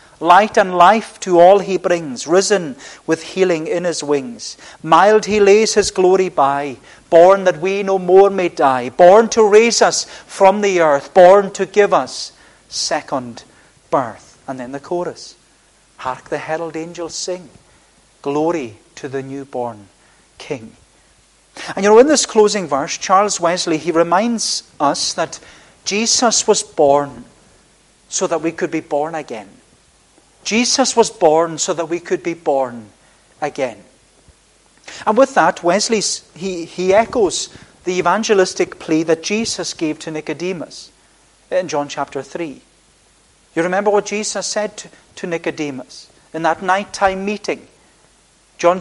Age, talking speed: 40-59, 145 wpm